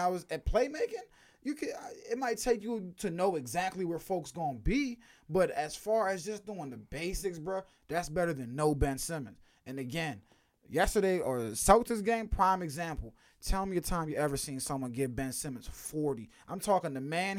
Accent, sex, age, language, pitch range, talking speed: American, male, 20-39, English, 145-215 Hz, 195 wpm